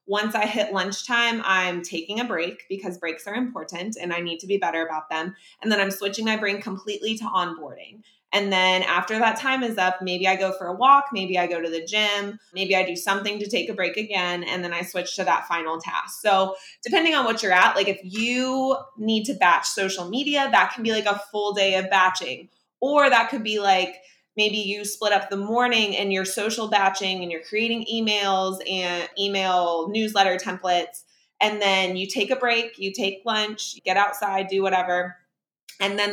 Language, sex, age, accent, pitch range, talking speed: English, female, 20-39, American, 185-225 Hz, 210 wpm